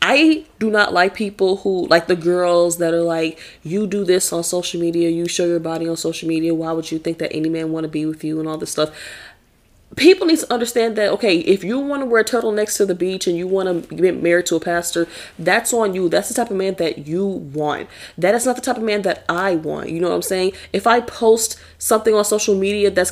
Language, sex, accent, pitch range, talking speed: English, female, American, 165-200 Hz, 260 wpm